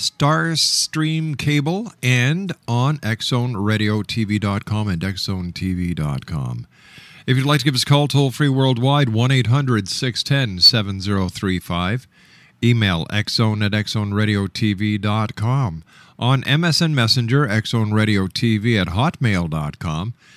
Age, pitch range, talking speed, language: 50-69, 105-140 Hz, 95 wpm, English